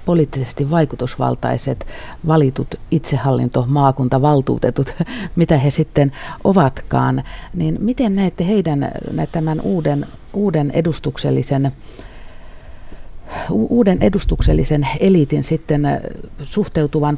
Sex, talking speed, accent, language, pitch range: female, 75 wpm, native, Finnish, 145-190 Hz